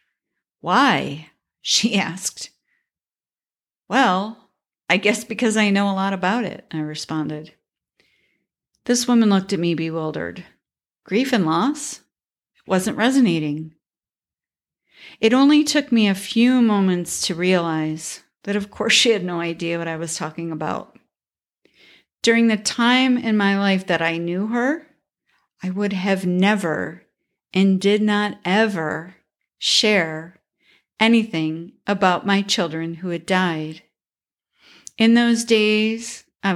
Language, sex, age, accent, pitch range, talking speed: English, female, 50-69, American, 170-225 Hz, 125 wpm